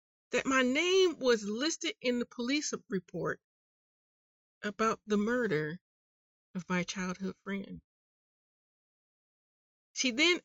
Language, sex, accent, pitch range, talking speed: English, female, American, 210-310 Hz, 105 wpm